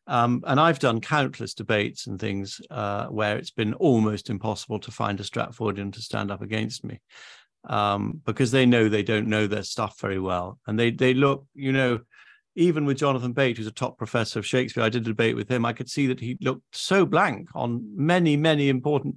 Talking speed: 215 wpm